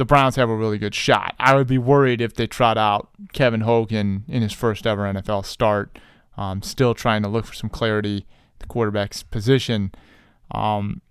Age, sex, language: 20-39, male, English